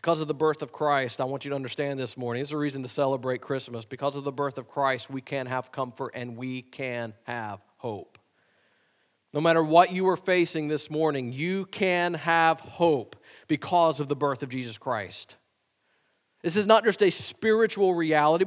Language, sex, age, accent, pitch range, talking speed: English, male, 40-59, American, 150-205 Hz, 200 wpm